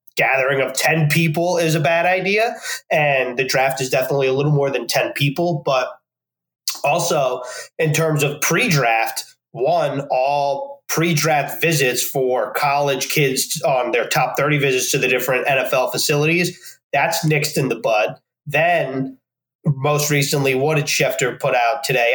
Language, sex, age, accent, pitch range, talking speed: English, male, 30-49, American, 135-165 Hz, 150 wpm